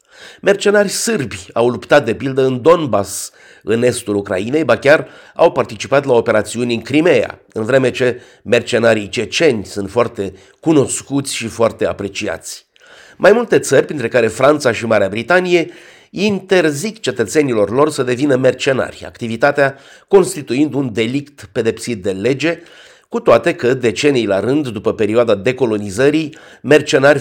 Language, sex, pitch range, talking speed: Romanian, male, 110-150 Hz, 135 wpm